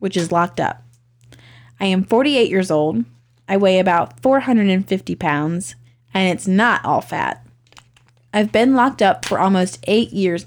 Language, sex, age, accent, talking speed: English, female, 20-39, American, 155 wpm